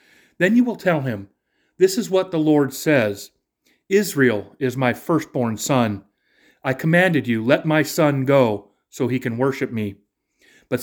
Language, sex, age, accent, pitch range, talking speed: English, male, 40-59, American, 115-170 Hz, 160 wpm